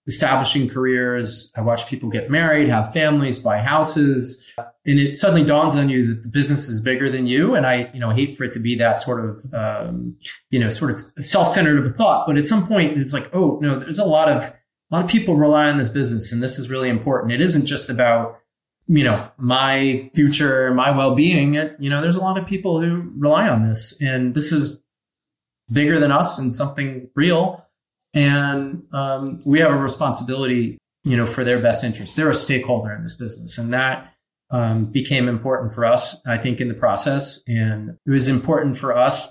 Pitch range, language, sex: 120-145 Hz, English, male